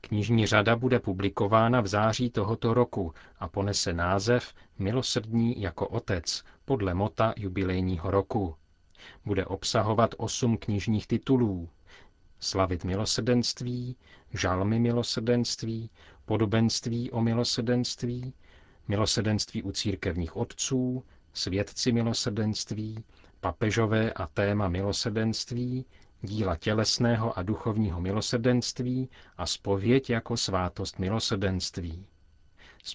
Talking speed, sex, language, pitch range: 95 wpm, male, Czech, 95-115 Hz